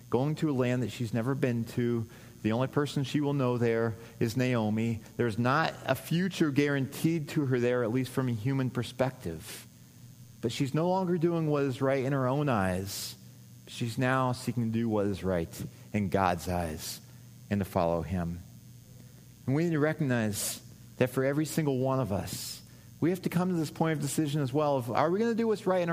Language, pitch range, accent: English, 115-150 Hz, American